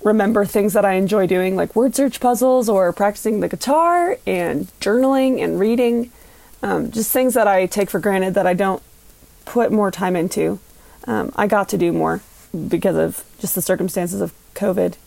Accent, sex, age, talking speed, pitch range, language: American, female, 20-39, 185 wpm, 190-220 Hz, English